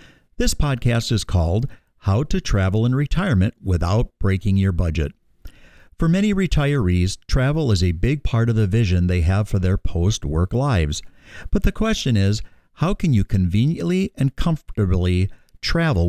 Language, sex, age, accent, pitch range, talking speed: English, male, 50-69, American, 90-125 Hz, 155 wpm